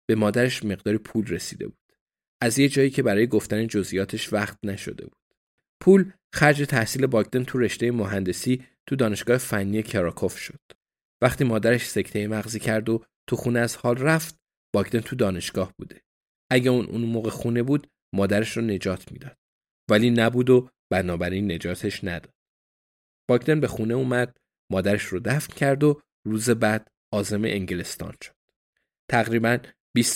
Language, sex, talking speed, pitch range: Persian, male, 150 wpm, 100-125 Hz